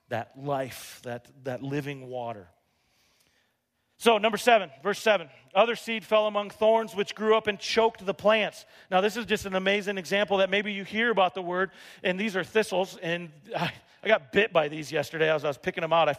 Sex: male